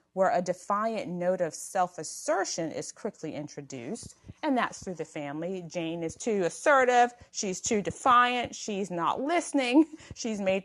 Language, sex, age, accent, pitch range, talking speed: English, female, 30-49, American, 170-220 Hz, 145 wpm